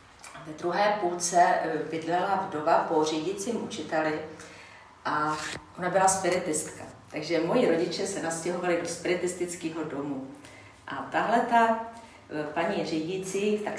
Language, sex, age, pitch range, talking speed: Slovak, female, 40-59, 155-175 Hz, 110 wpm